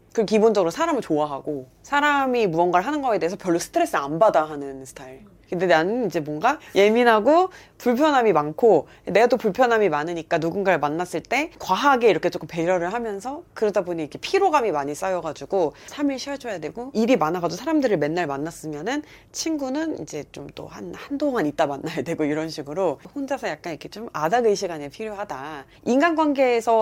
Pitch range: 160-270 Hz